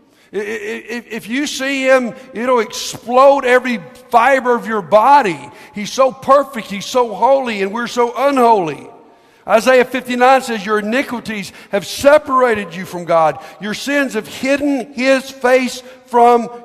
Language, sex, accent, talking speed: English, male, American, 135 wpm